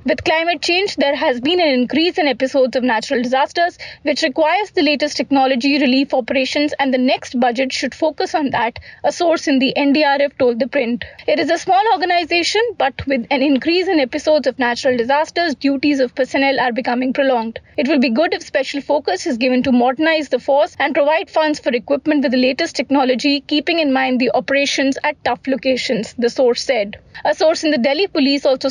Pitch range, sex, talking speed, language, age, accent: 265-315 Hz, female, 200 wpm, English, 30-49, Indian